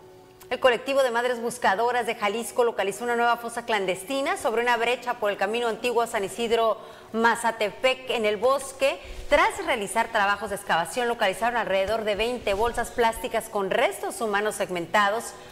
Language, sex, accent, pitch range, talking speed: Spanish, female, Mexican, 210-255 Hz, 160 wpm